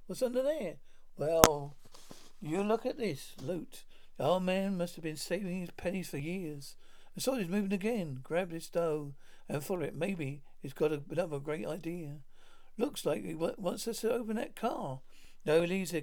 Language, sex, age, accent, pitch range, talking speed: English, male, 50-69, British, 155-200 Hz, 185 wpm